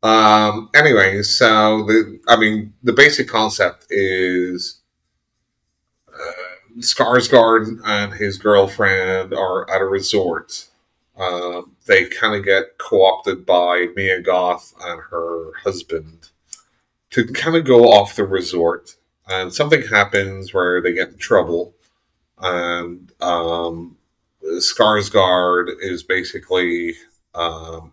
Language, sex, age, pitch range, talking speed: English, male, 30-49, 90-110 Hz, 110 wpm